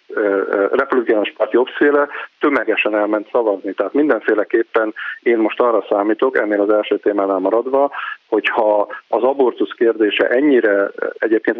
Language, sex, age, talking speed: Hungarian, male, 50-69, 125 wpm